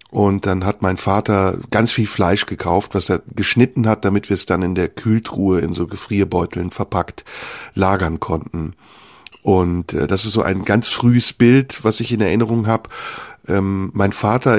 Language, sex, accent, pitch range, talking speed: German, male, German, 100-120 Hz, 175 wpm